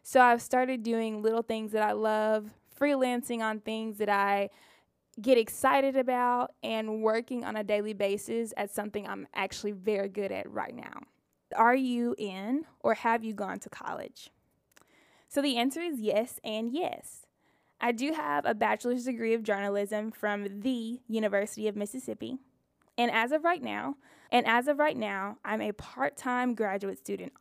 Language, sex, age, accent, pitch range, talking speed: English, female, 10-29, American, 210-250 Hz, 165 wpm